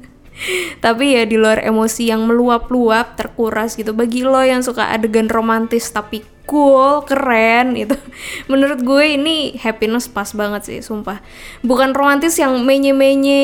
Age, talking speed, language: 20-39, 140 wpm, Indonesian